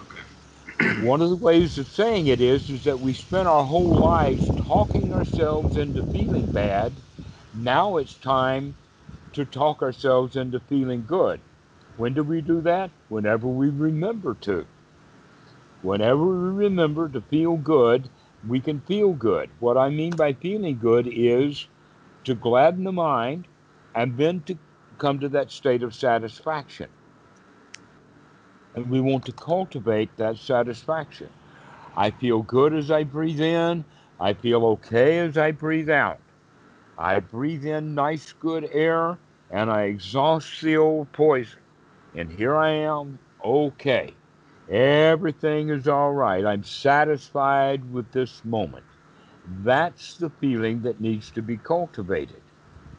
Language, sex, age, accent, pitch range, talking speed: English, male, 60-79, American, 120-160 Hz, 140 wpm